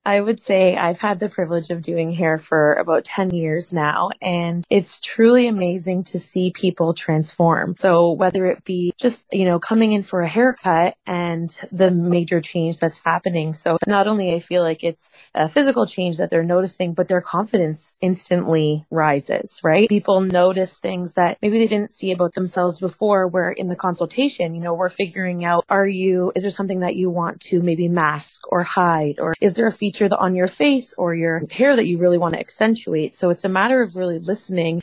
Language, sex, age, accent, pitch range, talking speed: English, female, 20-39, American, 170-200 Hz, 205 wpm